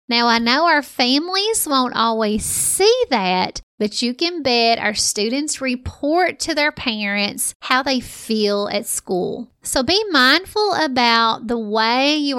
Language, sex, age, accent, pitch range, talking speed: English, female, 30-49, American, 220-280 Hz, 150 wpm